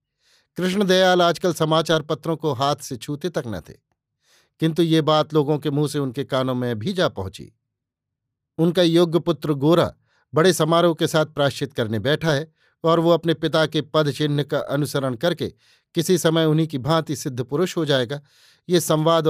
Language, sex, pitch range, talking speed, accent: Hindi, male, 140-165 Hz, 175 wpm, native